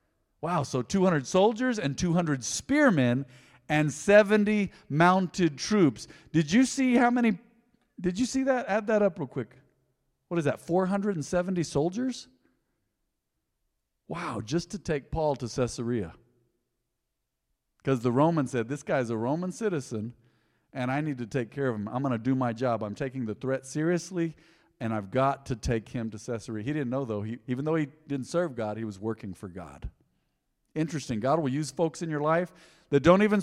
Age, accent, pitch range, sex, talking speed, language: 50-69, American, 125-185 Hz, male, 180 wpm, English